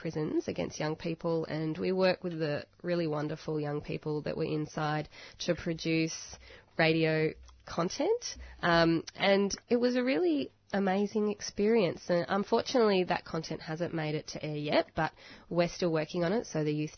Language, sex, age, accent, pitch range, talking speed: English, female, 20-39, Australian, 145-170 Hz, 165 wpm